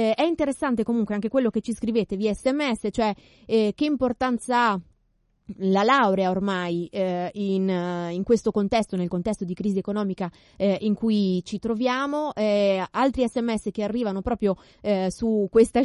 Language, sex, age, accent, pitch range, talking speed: Italian, female, 20-39, native, 200-245 Hz, 160 wpm